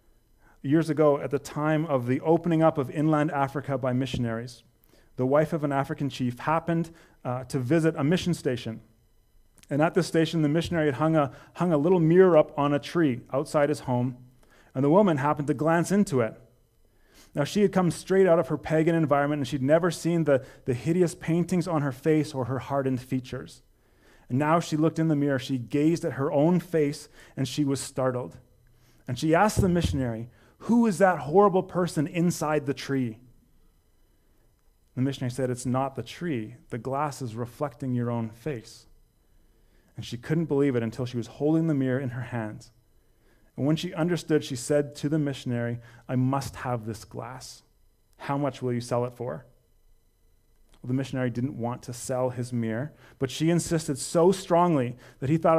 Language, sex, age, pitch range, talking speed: English, male, 30-49, 125-160 Hz, 190 wpm